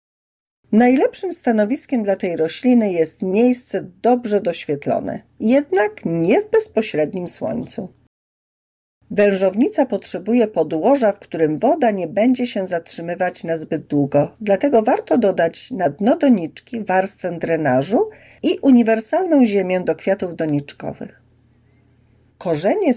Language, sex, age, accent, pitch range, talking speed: Polish, female, 40-59, native, 160-240 Hz, 110 wpm